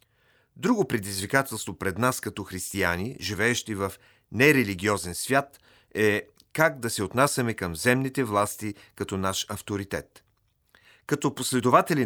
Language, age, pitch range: Bulgarian, 40-59, 100-135 Hz